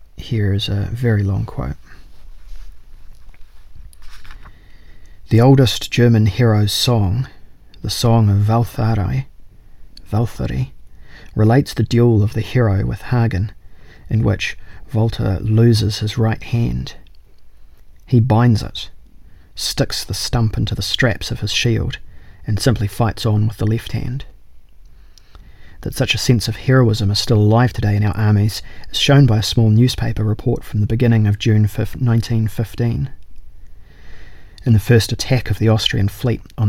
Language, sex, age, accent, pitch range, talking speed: English, male, 40-59, Australian, 100-115 Hz, 140 wpm